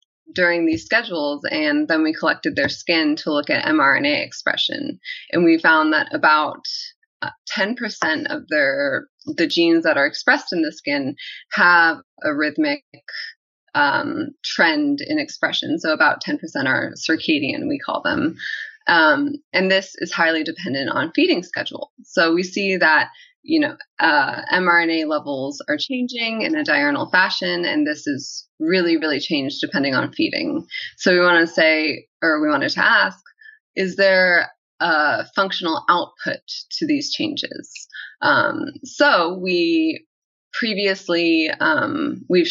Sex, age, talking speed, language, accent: female, 20-39, 145 wpm, English, American